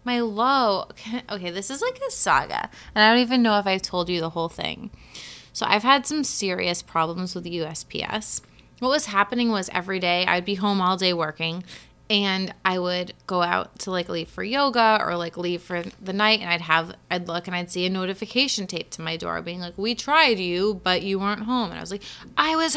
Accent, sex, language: American, female, English